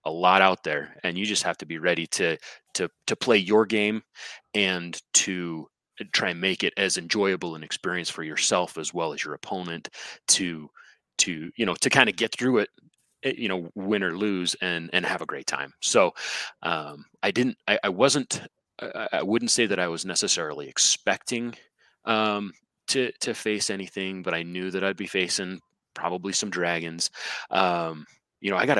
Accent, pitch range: American, 85-100 Hz